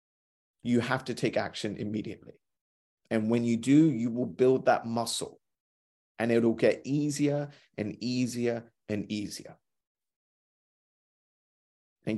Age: 30-49